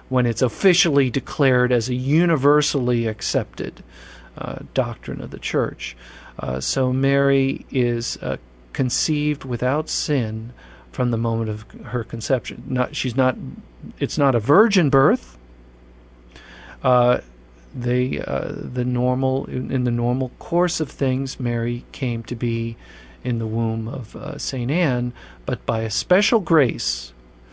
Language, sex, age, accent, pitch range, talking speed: English, male, 50-69, American, 115-150 Hz, 135 wpm